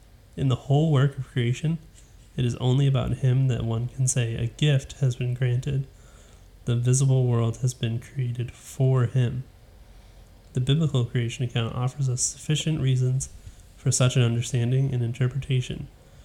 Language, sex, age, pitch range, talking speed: English, male, 30-49, 115-135 Hz, 155 wpm